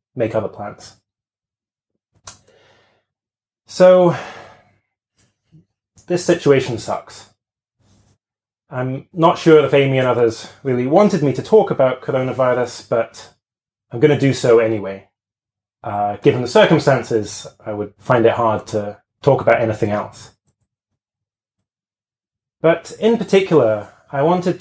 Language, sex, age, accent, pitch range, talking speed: English, male, 30-49, British, 105-145 Hz, 115 wpm